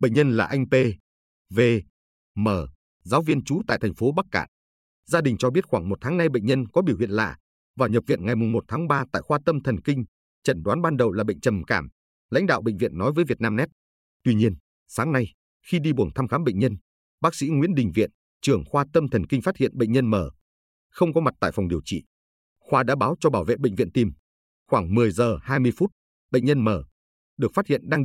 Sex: male